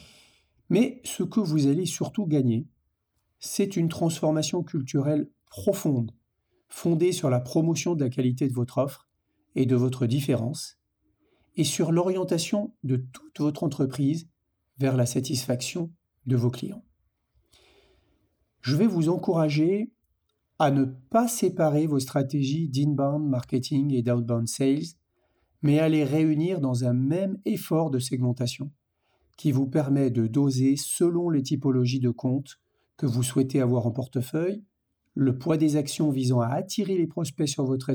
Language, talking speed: French, 145 wpm